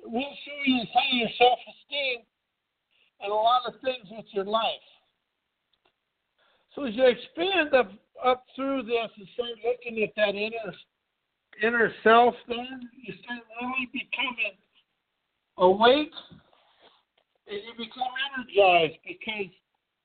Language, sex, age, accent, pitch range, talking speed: English, male, 60-79, American, 215-255 Hz, 125 wpm